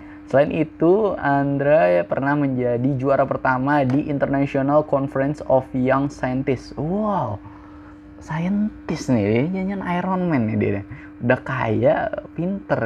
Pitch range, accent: 110-145 Hz, native